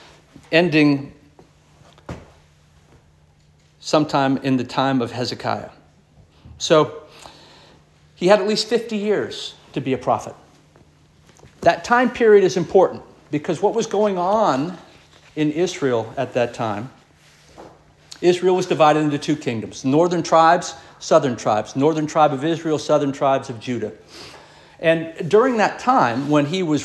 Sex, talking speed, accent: male, 130 wpm, American